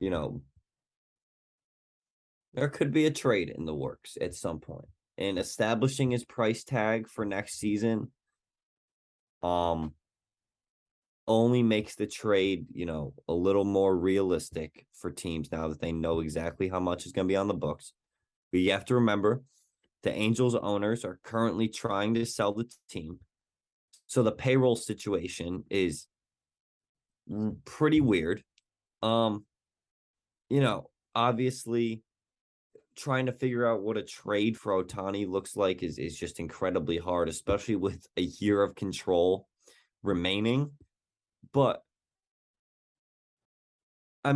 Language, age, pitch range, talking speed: English, 20-39, 95-125 Hz, 135 wpm